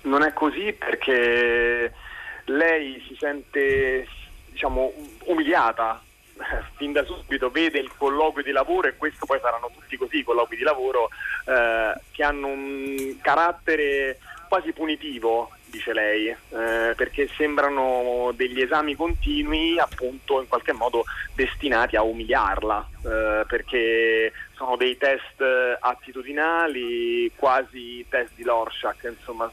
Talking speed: 125 wpm